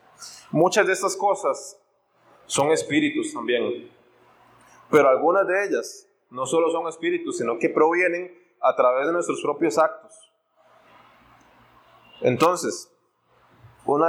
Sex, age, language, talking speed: male, 20-39, Spanish, 110 wpm